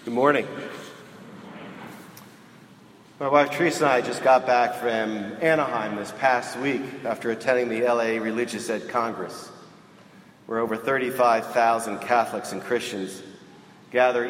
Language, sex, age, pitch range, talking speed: English, male, 40-59, 105-125 Hz, 120 wpm